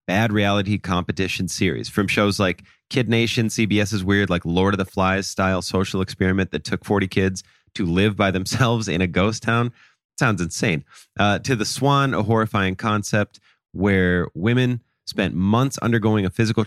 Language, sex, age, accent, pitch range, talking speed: English, male, 30-49, American, 95-115 Hz, 170 wpm